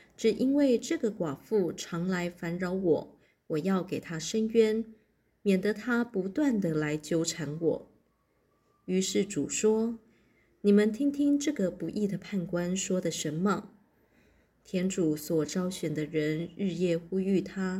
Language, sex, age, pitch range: Chinese, female, 20-39, 170-210 Hz